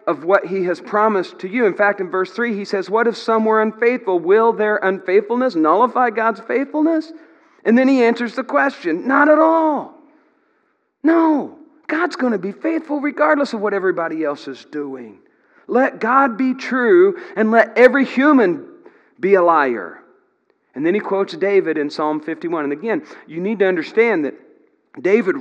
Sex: male